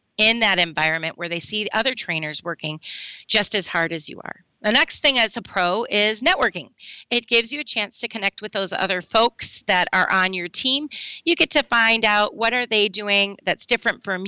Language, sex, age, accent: English, female, 30-49, American